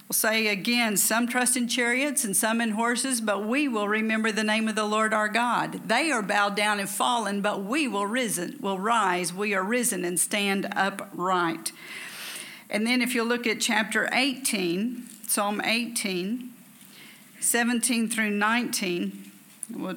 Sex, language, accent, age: female, English, American, 50-69